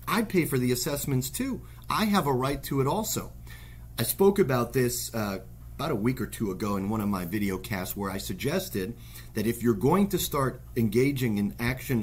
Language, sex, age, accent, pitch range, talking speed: English, male, 40-59, American, 95-135 Hz, 210 wpm